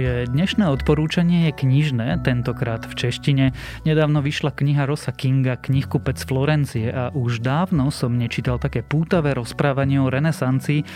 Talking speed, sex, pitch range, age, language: 130 wpm, male, 125-150 Hz, 30-49, Slovak